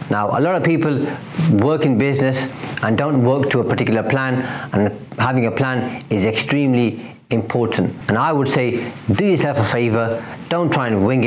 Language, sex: English, male